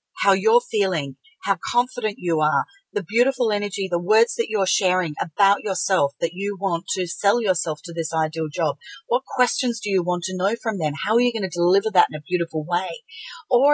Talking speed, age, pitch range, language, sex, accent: 210 wpm, 40-59, 185-270 Hz, English, female, Australian